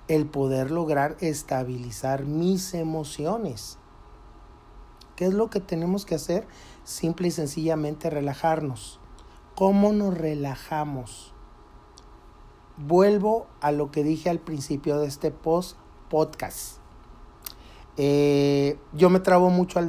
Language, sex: Spanish, male